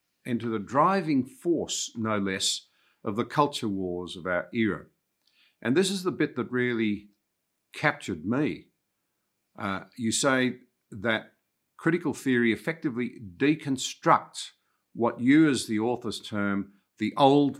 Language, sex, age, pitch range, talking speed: English, male, 50-69, 95-125 Hz, 130 wpm